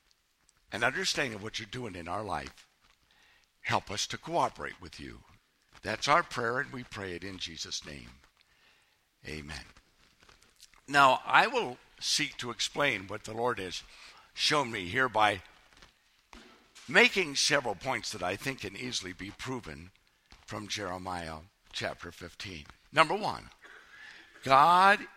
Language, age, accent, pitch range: English, 60-79, American, 90-150 Hz